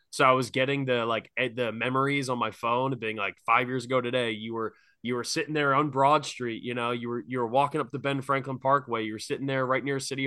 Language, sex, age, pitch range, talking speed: English, male, 20-39, 115-145 Hz, 265 wpm